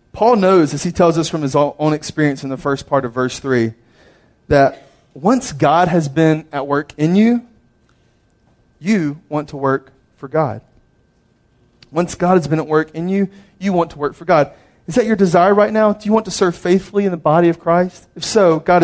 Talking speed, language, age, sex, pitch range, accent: 210 wpm, English, 30-49, male, 130-180 Hz, American